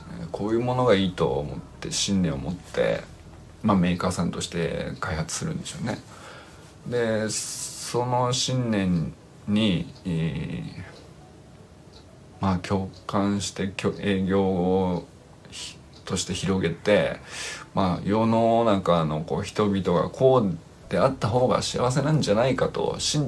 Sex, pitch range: male, 90-135 Hz